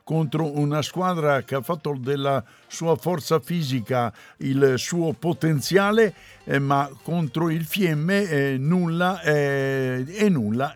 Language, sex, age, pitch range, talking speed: Italian, male, 60-79, 135-165 Hz, 125 wpm